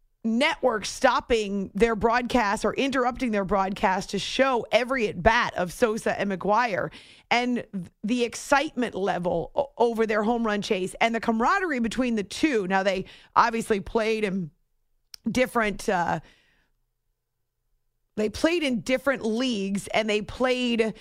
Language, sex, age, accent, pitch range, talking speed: English, female, 40-59, American, 190-235 Hz, 135 wpm